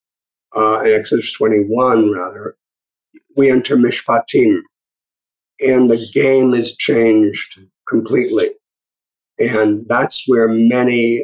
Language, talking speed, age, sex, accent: English, 90 wpm, 50-69, male, American